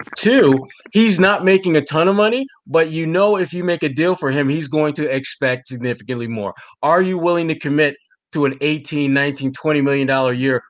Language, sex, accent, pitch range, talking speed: English, male, American, 135-180 Hz, 210 wpm